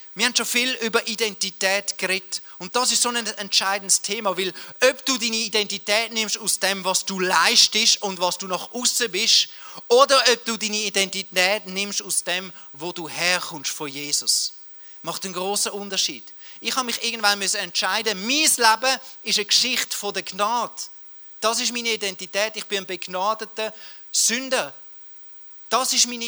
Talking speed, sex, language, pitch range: 165 wpm, male, German, 190-230 Hz